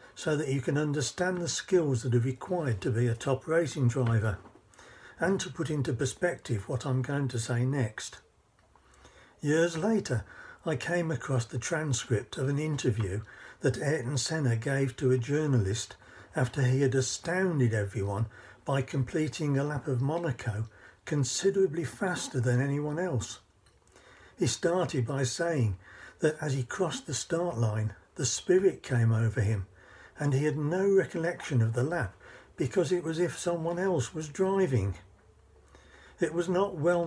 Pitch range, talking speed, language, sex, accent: 120-165 Hz, 155 wpm, English, male, British